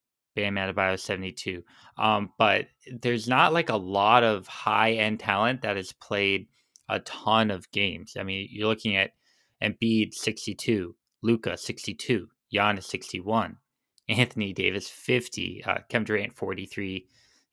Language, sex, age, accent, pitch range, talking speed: English, male, 20-39, American, 95-115 Hz, 135 wpm